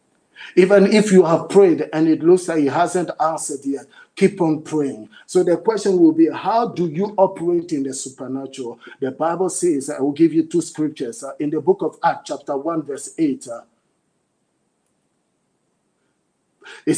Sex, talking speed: male, 165 wpm